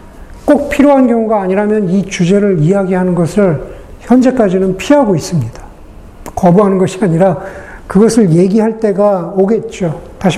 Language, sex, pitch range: Korean, male, 180-235 Hz